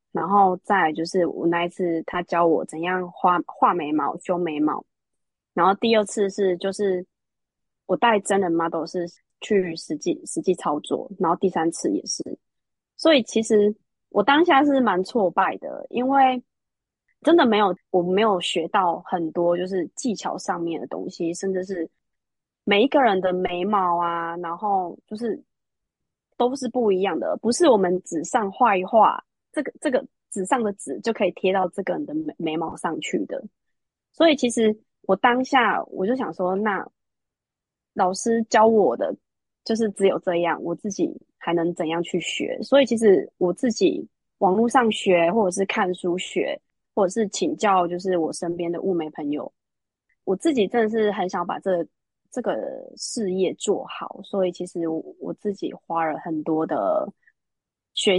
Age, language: 20-39, Chinese